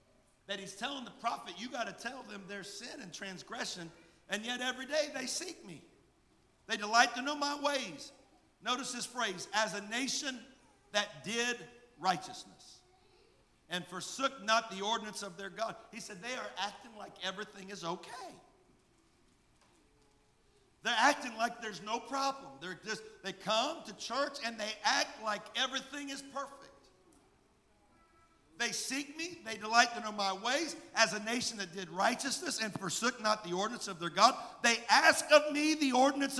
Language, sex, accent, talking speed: English, male, American, 165 wpm